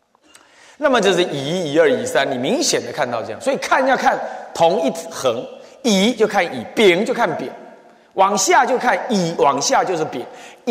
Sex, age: male, 30-49